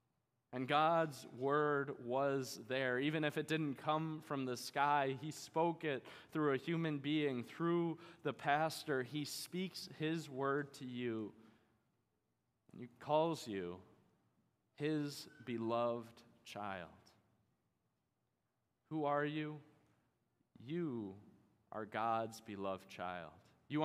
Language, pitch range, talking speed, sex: English, 120-155 Hz, 110 wpm, male